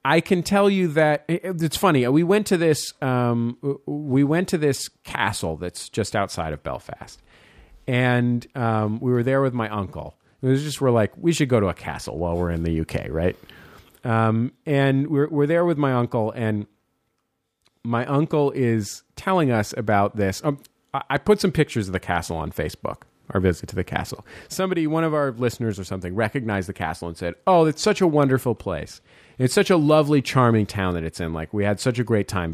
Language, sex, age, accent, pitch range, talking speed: English, male, 40-59, American, 95-140 Hz, 205 wpm